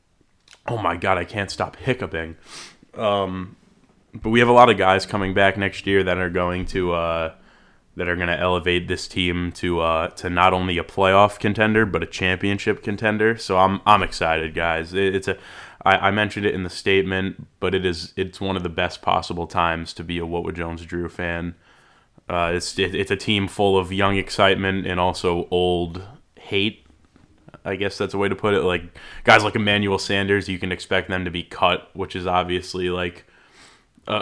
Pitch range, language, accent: 85-100 Hz, English, American